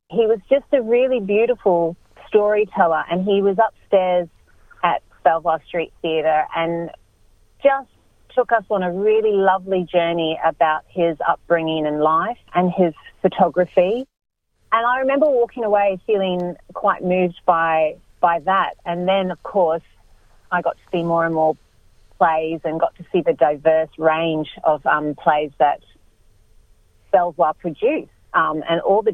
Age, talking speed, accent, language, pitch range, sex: 30-49, 150 wpm, Australian, English, 160-205 Hz, female